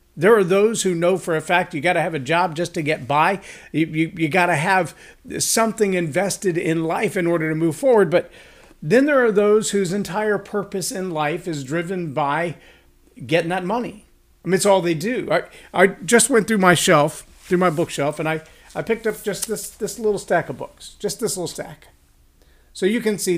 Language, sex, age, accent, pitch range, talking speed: English, male, 50-69, American, 155-185 Hz, 220 wpm